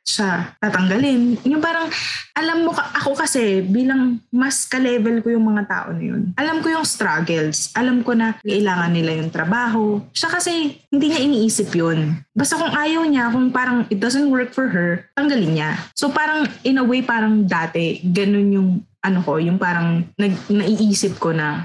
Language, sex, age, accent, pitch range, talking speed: Filipino, female, 20-39, native, 180-255 Hz, 175 wpm